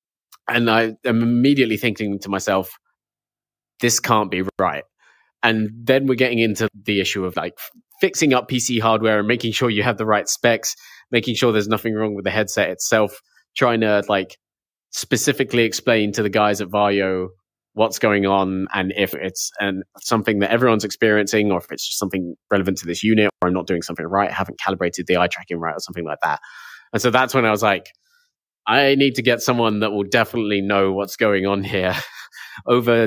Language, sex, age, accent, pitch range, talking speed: English, male, 20-39, British, 95-120 Hz, 200 wpm